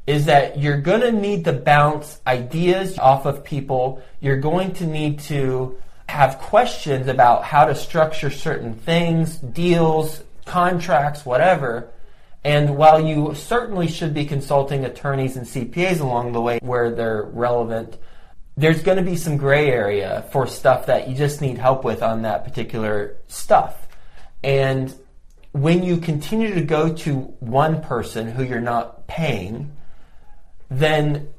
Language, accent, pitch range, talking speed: English, American, 120-155 Hz, 145 wpm